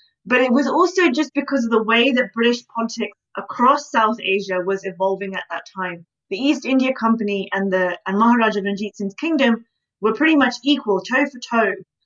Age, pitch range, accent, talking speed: 20-39, 190-250 Hz, British, 195 wpm